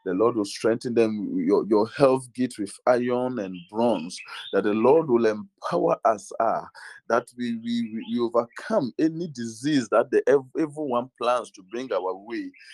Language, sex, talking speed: English, male, 165 wpm